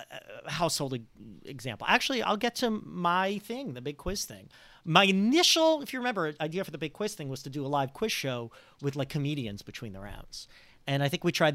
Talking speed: 215 wpm